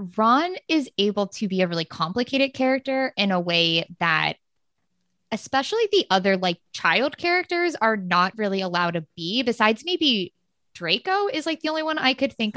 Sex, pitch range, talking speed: female, 180-265 Hz, 170 wpm